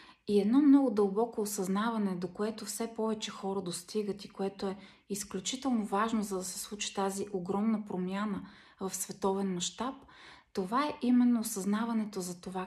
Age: 30-49